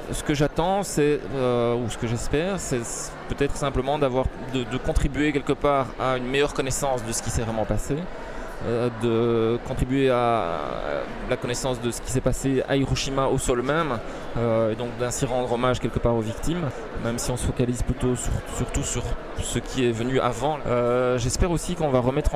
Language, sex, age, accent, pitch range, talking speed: French, male, 20-39, French, 115-135 Hz, 195 wpm